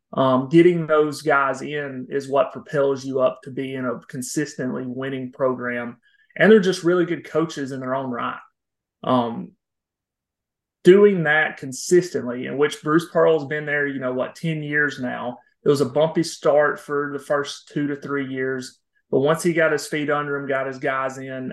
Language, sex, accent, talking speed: English, male, American, 185 wpm